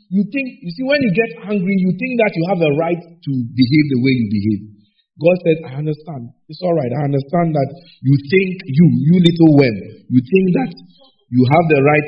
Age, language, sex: 50-69, English, male